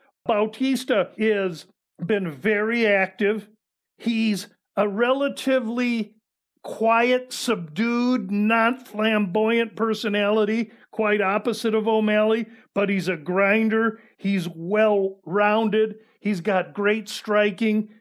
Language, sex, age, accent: English, male, 50-69, American